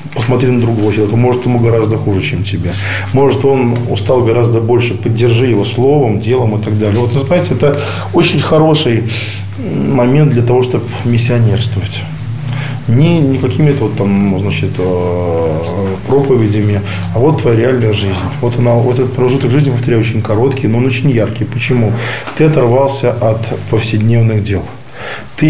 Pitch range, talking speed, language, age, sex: 110-130 Hz, 145 wpm, Russian, 20-39, male